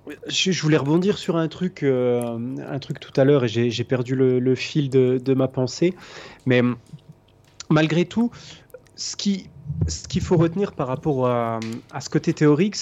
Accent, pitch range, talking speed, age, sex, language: French, 135-180 Hz, 185 wpm, 20-39, male, French